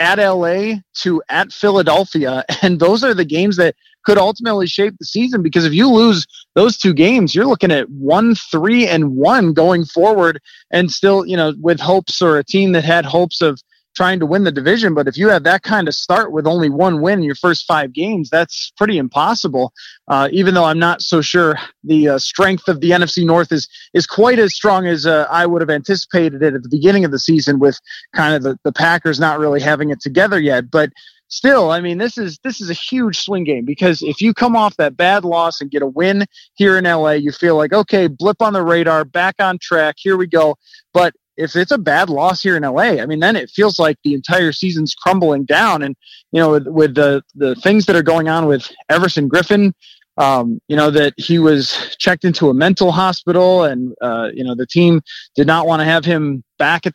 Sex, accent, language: male, American, English